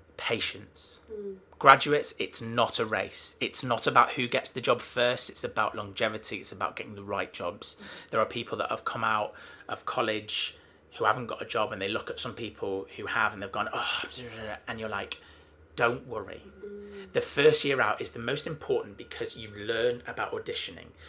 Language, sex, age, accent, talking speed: English, male, 30-49, British, 190 wpm